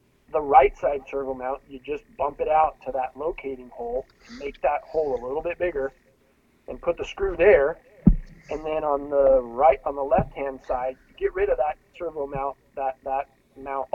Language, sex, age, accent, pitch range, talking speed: English, male, 30-49, American, 130-165 Hz, 200 wpm